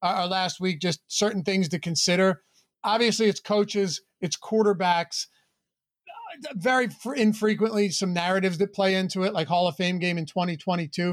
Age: 30-49